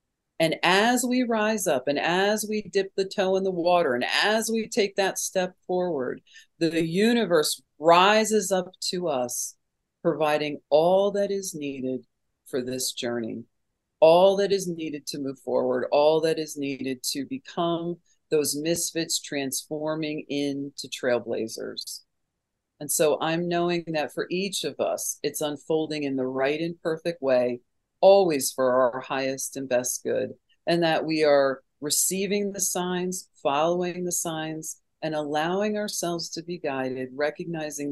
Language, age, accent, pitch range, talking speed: English, 50-69, American, 130-175 Hz, 150 wpm